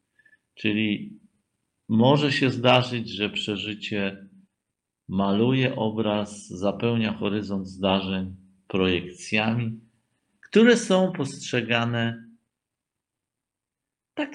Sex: male